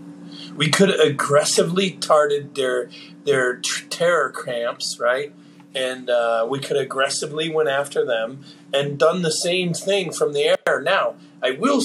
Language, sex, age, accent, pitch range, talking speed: English, male, 40-59, American, 140-175 Hz, 140 wpm